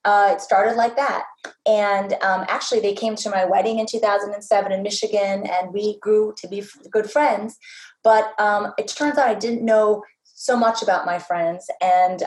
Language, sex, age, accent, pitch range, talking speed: English, female, 30-49, American, 190-230 Hz, 185 wpm